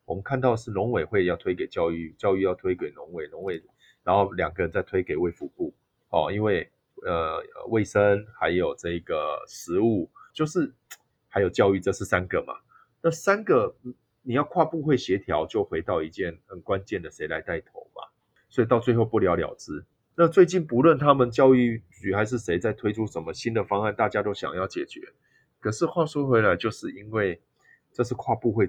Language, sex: Chinese, male